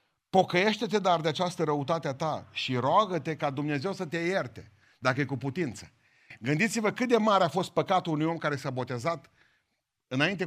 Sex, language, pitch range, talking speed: male, Romanian, 130-185 Hz, 180 wpm